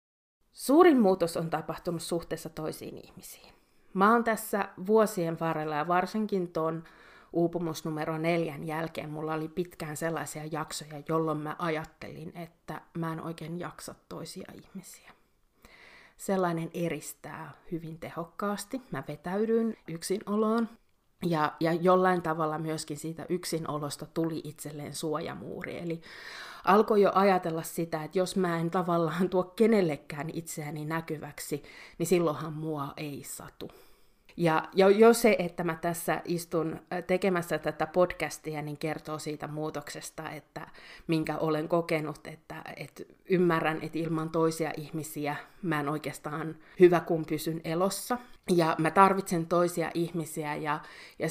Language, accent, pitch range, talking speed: Finnish, native, 155-175 Hz, 125 wpm